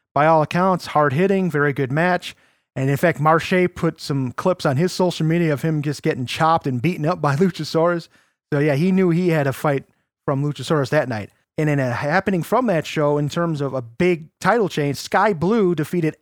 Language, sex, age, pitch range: English, male, 30-49, 150-190 Hz